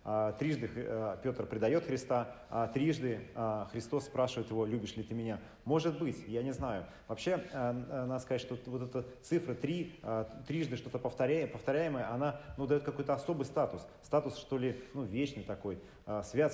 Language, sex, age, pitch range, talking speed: Russian, male, 40-59, 115-135 Hz, 150 wpm